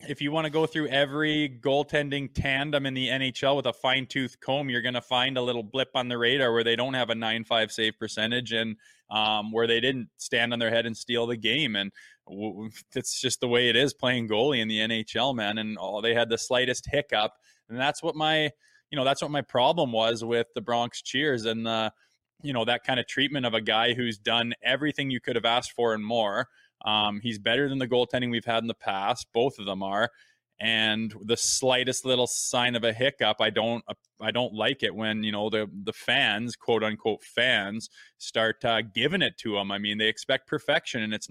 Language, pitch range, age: English, 110-135 Hz, 20-39